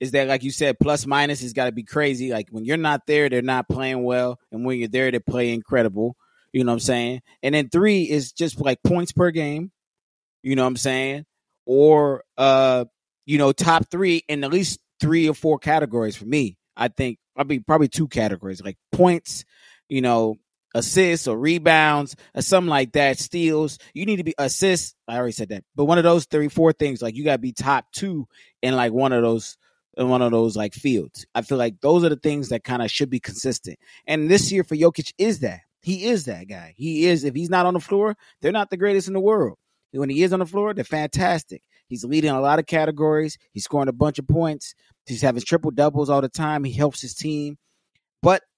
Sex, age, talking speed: male, 20-39, 230 wpm